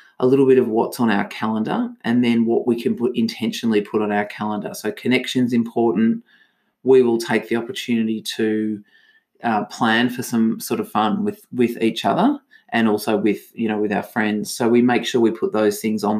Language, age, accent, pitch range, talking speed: English, 30-49, Australian, 110-130 Hz, 210 wpm